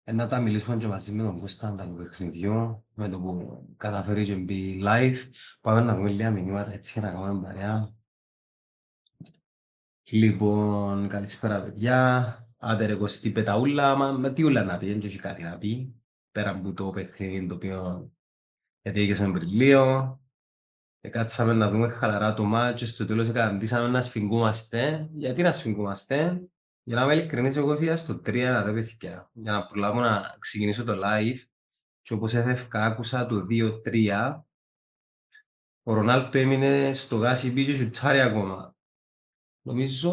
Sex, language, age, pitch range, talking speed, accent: male, Greek, 20-39, 105-130 Hz, 135 wpm, Spanish